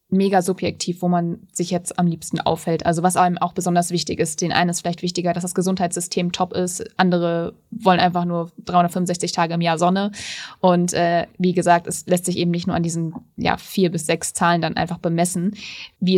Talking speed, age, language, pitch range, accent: 210 wpm, 20-39, German, 175-220 Hz, German